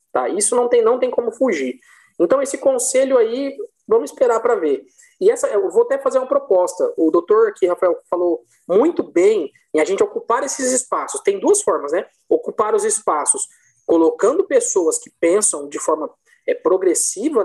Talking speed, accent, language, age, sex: 180 wpm, Brazilian, Portuguese, 20-39, male